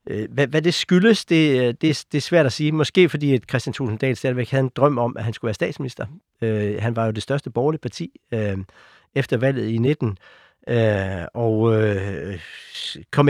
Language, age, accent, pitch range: Danish, 60-79, native, 110-140 Hz